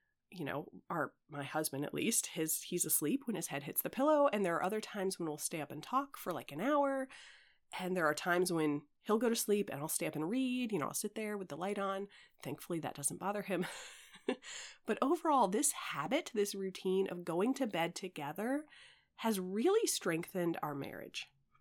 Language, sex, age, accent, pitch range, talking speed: English, female, 30-49, American, 165-210 Hz, 210 wpm